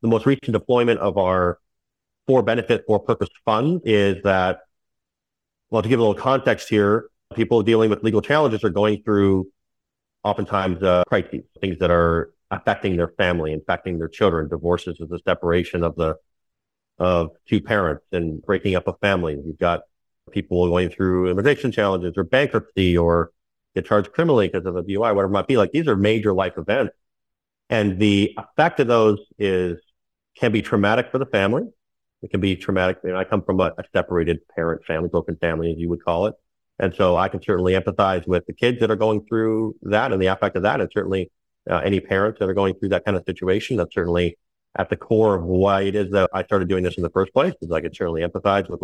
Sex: male